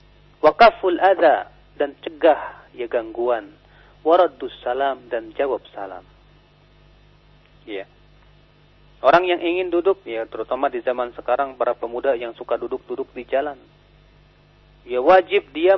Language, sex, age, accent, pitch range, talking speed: English, male, 40-59, Indonesian, 135-175 Hz, 120 wpm